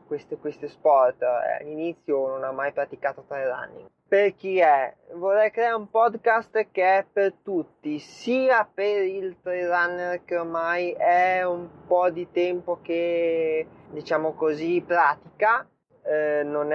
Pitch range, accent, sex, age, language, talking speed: 145-190 Hz, native, male, 20-39, Italian, 135 wpm